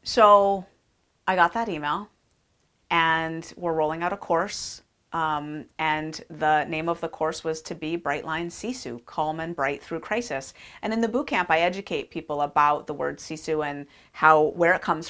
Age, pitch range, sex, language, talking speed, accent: 30-49, 155-185 Hz, female, English, 180 wpm, American